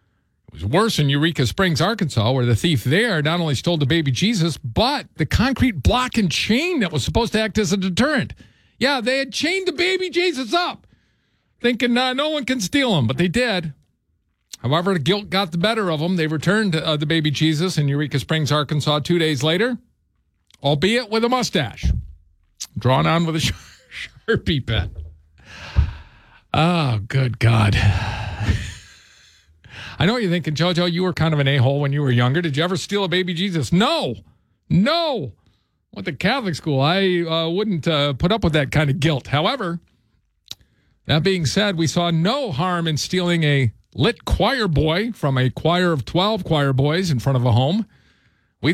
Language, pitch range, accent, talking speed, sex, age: English, 120-185 Hz, American, 185 wpm, male, 50-69